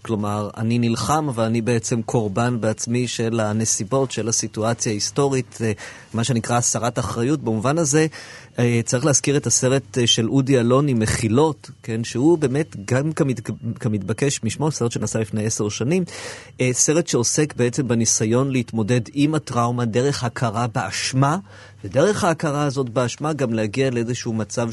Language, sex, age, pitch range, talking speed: Hebrew, male, 30-49, 110-135 Hz, 135 wpm